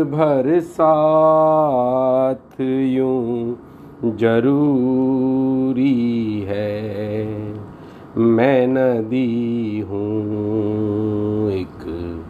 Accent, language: native, Hindi